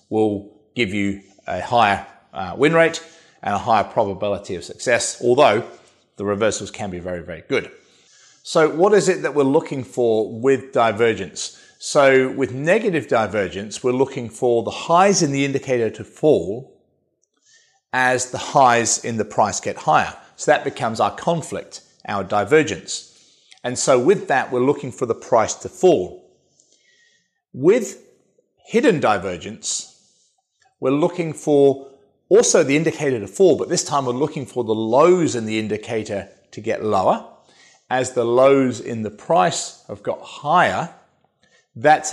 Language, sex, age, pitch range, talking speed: English, male, 30-49, 110-155 Hz, 150 wpm